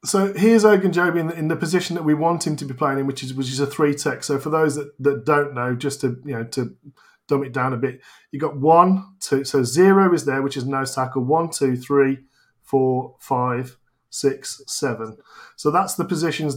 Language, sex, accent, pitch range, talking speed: English, male, British, 135-165 Hz, 220 wpm